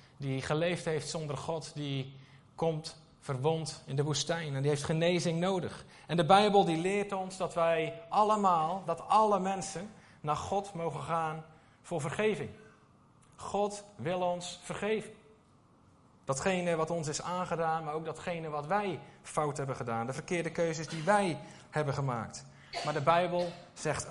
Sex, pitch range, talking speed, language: male, 135-175 Hz, 155 wpm, Dutch